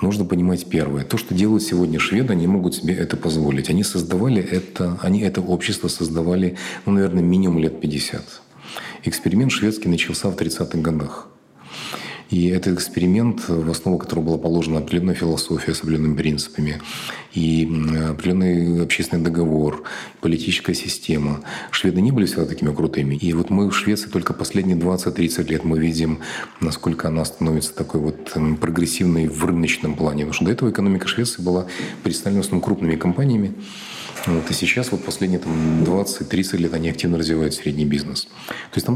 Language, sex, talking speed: Russian, male, 155 wpm